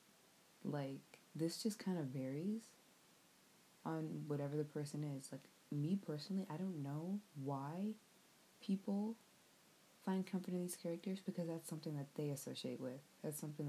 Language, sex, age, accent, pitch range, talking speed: English, female, 20-39, American, 145-190 Hz, 145 wpm